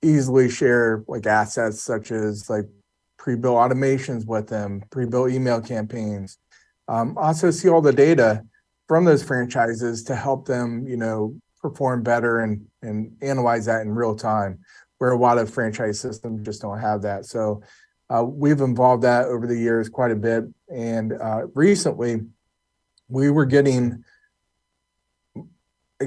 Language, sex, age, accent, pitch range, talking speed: English, male, 30-49, American, 110-135 Hz, 150 wpm